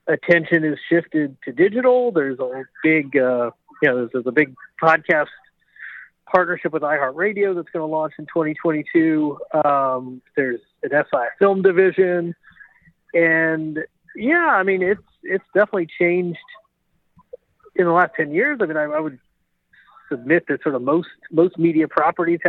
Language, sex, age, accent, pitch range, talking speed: English, male, 50-69, American, 150-190 Hz, 150 wpm